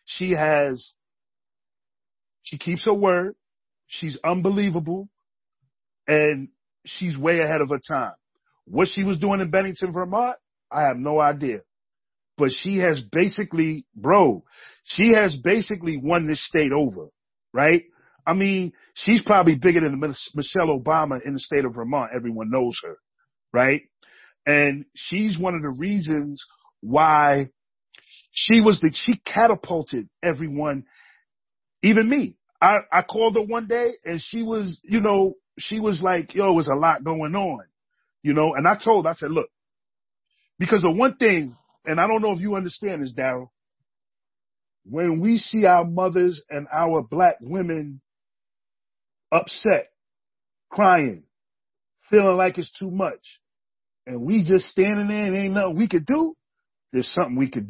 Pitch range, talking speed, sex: 150-200 Hz, 150 wpm, male